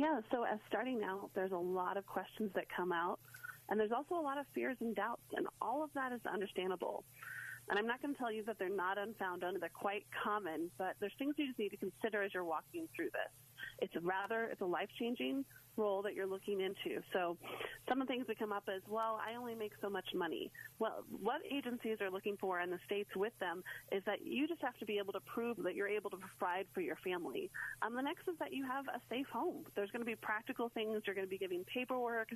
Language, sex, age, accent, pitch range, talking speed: English, female, 30-49, American, 190-250 Hz, 245 wpm